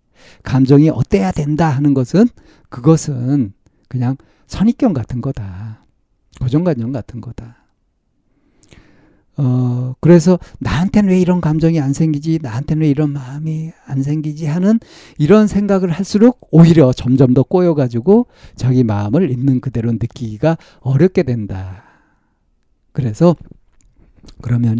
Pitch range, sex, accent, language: 115-155 Hz, male, native, Korean